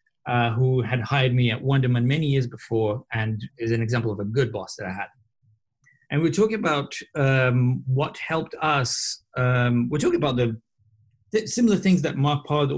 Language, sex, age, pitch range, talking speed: English, male, 30-49, 115-140 Hz, 185 wpm